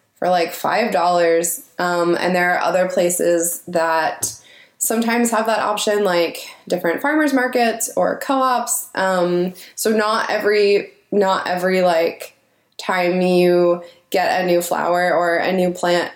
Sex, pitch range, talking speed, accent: female, 180-230 Hz, 135 wpm, American